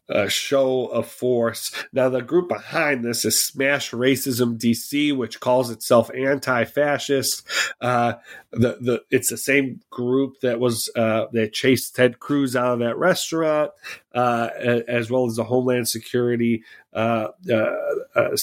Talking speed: 145 wpm